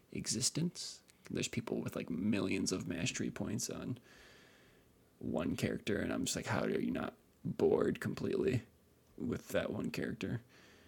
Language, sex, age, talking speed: English, male, 20-39, 145 wpm